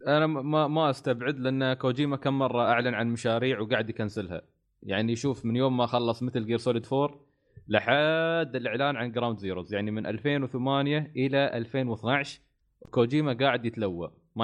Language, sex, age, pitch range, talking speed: Arabic, male, 20-39, 110-135 Hz, 150 wpm